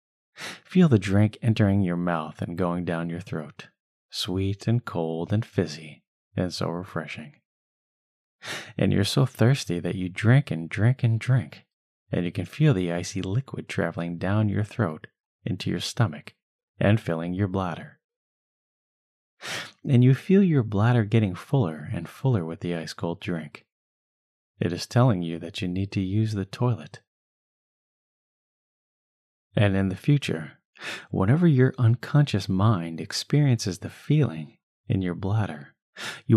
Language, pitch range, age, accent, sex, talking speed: English, 90-120 Hz, 30-49, American, male, 145 wpm